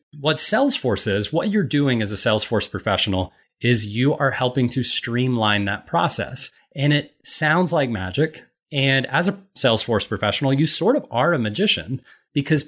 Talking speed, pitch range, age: 165 wpm, 110-145 Hz, 30-49